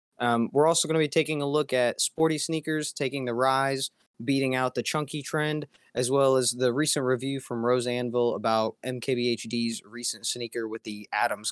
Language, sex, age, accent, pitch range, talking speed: English, male, 20-39, American, 115-155 Hz, 190 wpm